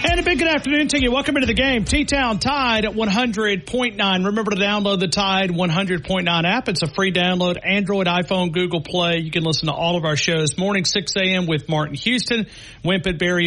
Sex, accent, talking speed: male, American, 200 wpm